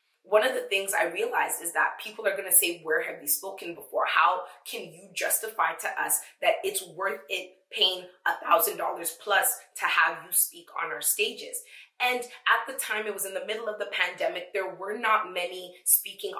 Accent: American